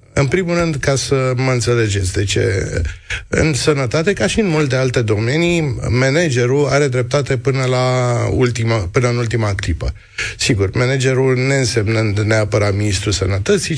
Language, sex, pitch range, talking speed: Romanian, male, 105-135 Hz, 150 wpm